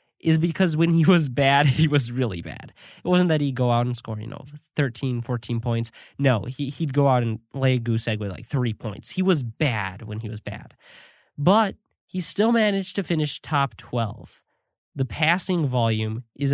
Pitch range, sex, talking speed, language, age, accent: 120-165 Hz, male, 200 wpm, English, 20-39, American